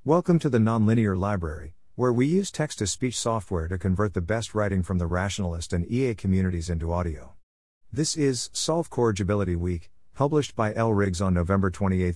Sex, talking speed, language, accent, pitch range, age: male, 175 wpm, English, American, 90-120 Hz, 50-69